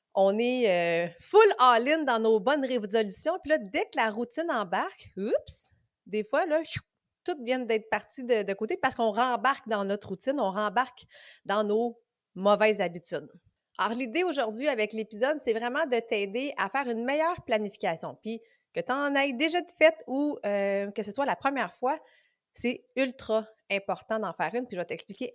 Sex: female